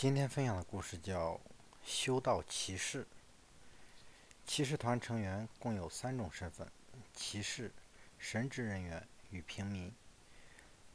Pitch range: 90-115 Hz